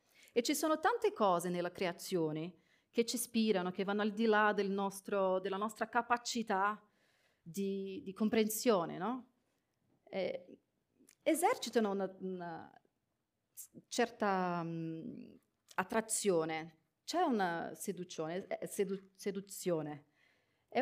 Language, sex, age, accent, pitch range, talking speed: Italian, female, 40-59, native, 170-240 Hz, 105 wpm